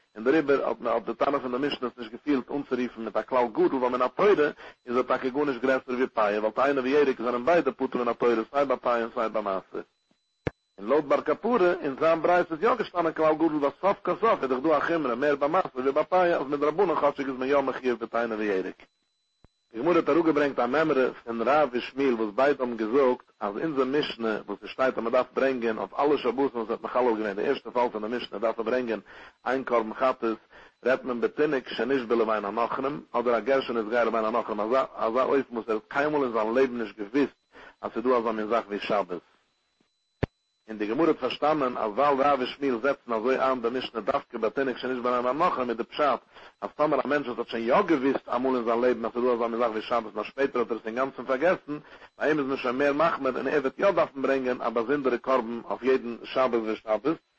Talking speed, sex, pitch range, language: 135 wpm, male, 115-145 Hz, English